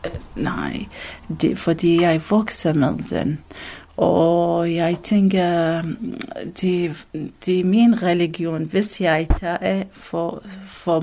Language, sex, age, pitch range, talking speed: Danish, female, 40-59, 175-210 Hz, 105 wpm